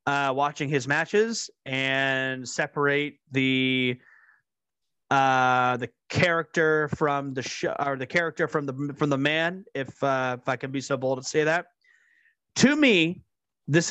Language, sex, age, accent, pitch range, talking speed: English, male, 30-49, American, 135-175 Hz, 150 wpm